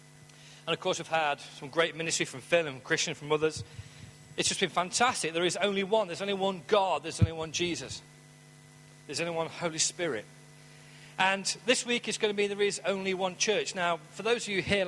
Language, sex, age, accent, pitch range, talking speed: English, male, 40-59, British, 150-180 Hz, 220 wpm